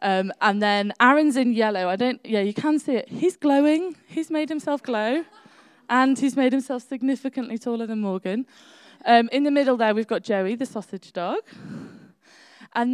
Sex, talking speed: female, 180 wpm